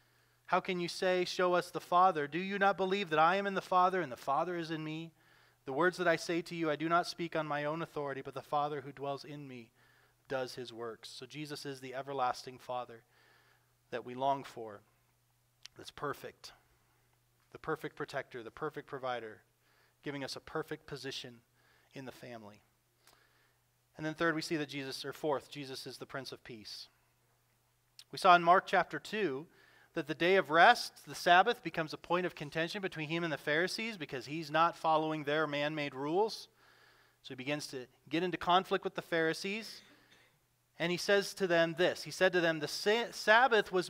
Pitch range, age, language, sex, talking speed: 140-185 Hz, 30-49, English, male, 195 wpm